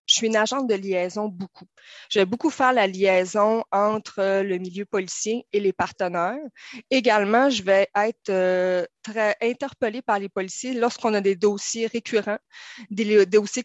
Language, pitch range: French, 200-235 Hz